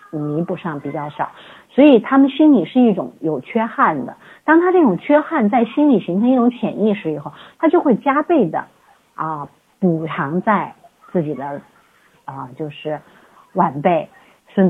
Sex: female